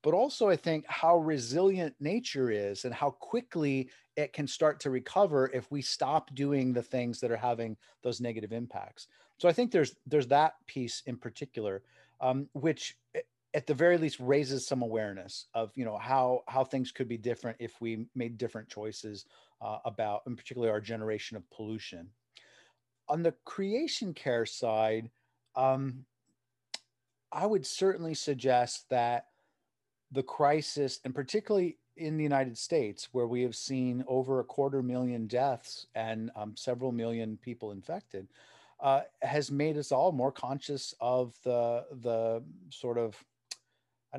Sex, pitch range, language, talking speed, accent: male, 120-150 Hz, English, 155 wpm, American